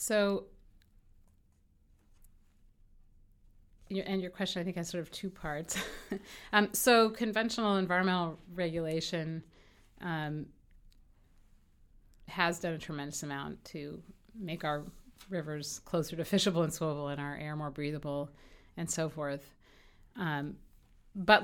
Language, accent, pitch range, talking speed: English, American, 145-175 Hz, 115 wpm